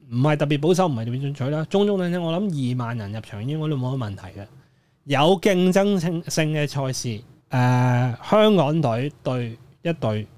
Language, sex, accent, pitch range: Chinese, male, native, 125-175 Hz